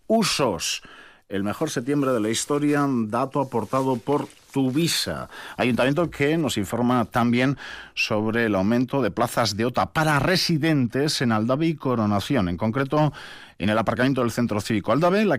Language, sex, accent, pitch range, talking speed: Spanish, male, Spanish, 105-140 Hz, 150 wpm